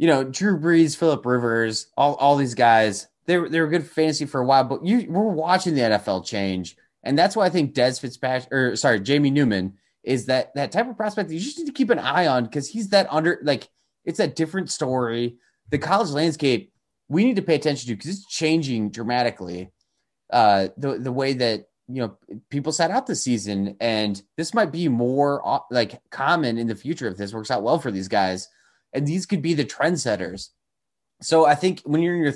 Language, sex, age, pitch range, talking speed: English, male, 20-39, 115-165 Hz, 220 wpm